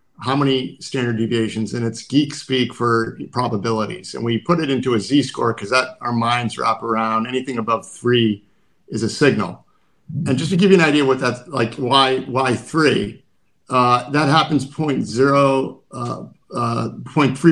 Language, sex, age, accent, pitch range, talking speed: English, male, 50-69, American, 120-145 Hz, 160 wpm